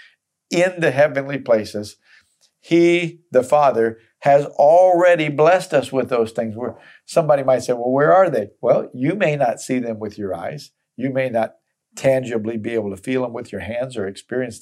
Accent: American